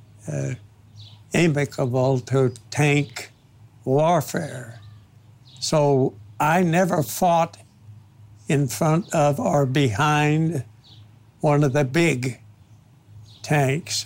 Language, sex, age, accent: English, male, 60-79, American